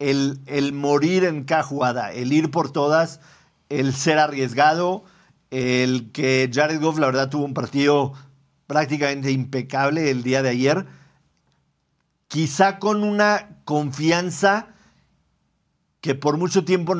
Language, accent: Spanish, Mexican